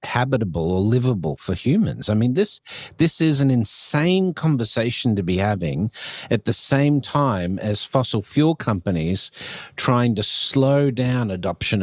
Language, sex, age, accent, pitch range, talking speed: English, male, 50-69, Australian, 85-120 Hz, 145 wpm